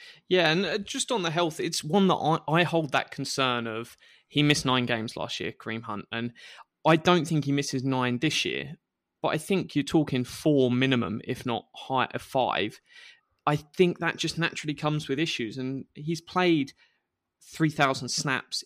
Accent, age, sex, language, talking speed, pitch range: British, 20-39, male, English, 180 wpm, 130-160 Hz